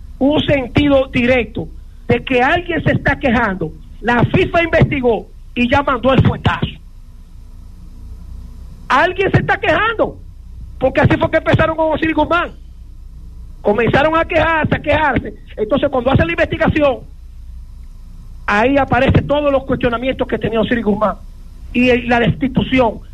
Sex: male